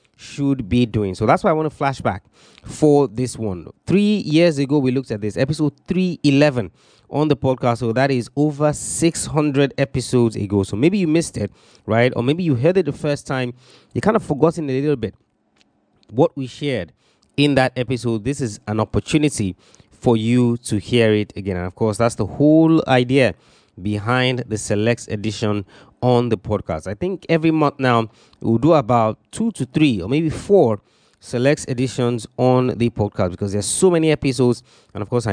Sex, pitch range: male, 105-140 Hz